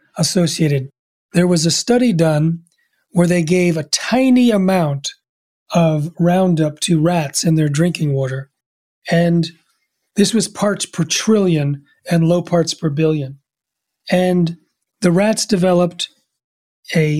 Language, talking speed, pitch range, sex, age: English, 125 wpm, 155-185 Hz, male, 30-49